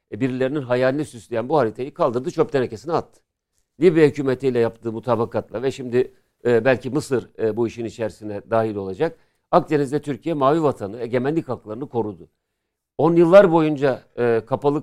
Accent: native